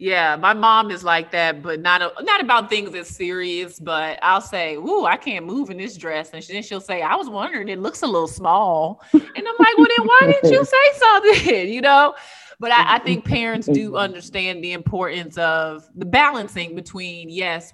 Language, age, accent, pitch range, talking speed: English, 20-39, American, 165-205 Hz, 215 wpm